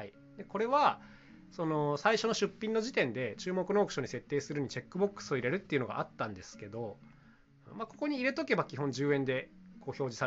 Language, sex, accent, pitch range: Japanese, male, native, 125-205 Hz